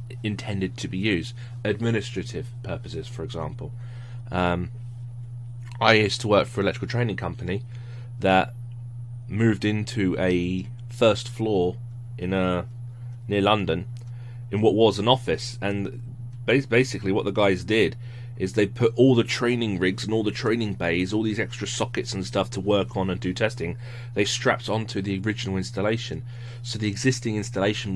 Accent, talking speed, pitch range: British, 155 wpm, 100-120 Hz